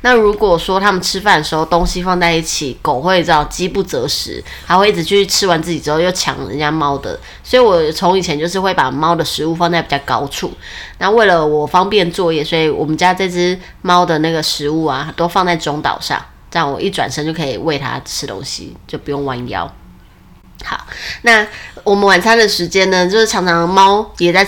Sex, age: female, 20-39